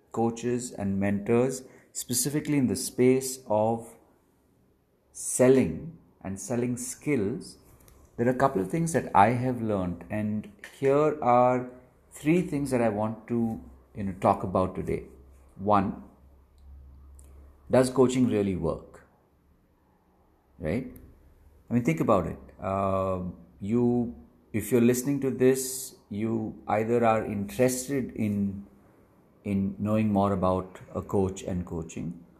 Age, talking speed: 50-69, 125 wpm